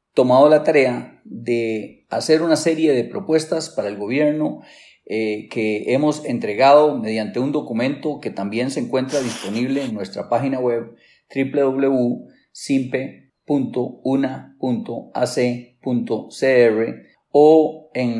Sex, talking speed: male, 100 wpm